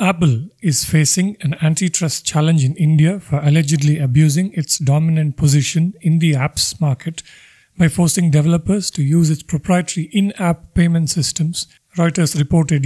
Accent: Indian